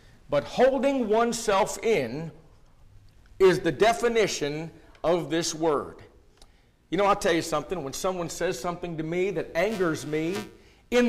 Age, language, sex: 50-69, English, male